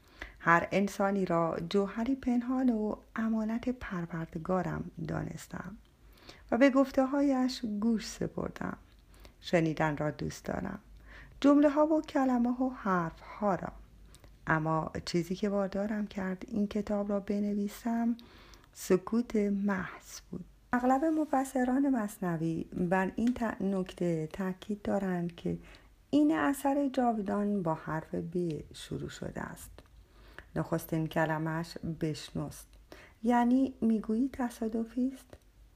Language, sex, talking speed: Persian, female, 105 wpm